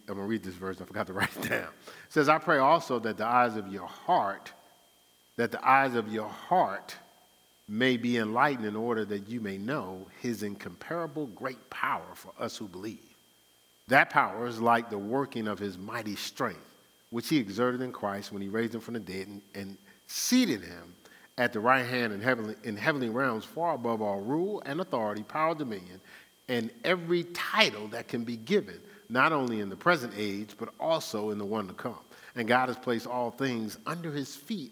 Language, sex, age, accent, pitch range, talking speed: English, male, 50-69, American, 105-150 Hz, 200 wpm